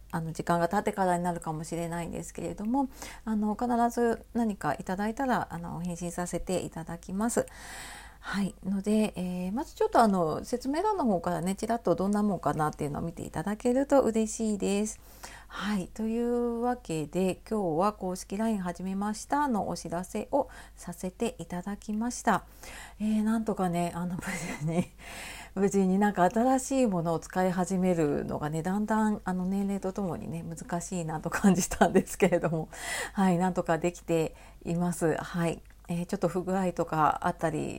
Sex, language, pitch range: female, Japanese, 175-220 Hz